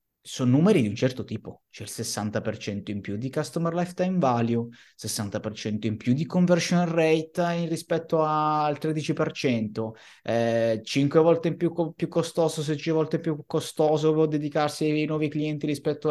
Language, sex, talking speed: Italian, male, 165 wpm